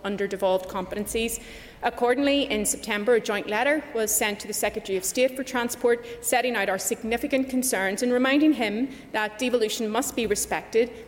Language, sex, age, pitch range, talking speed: English, female, 30-49, 205-245 Hz, 170 wpm